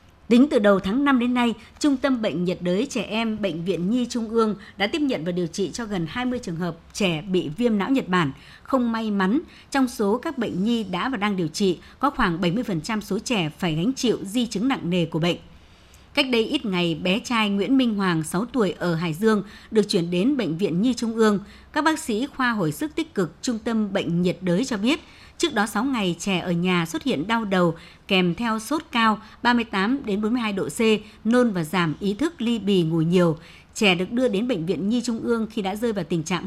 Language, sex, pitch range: Vietnamese, male, 180-240 Hz